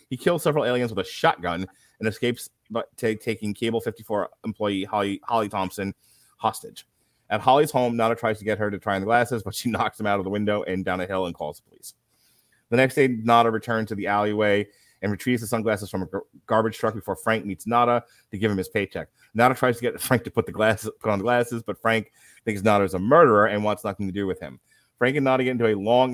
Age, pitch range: 30-49, 100-120 Hz